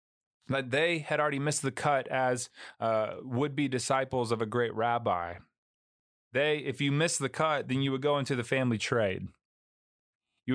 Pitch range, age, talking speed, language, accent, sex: 95-130 Hz, 30-49, 165 wpm, English, American, male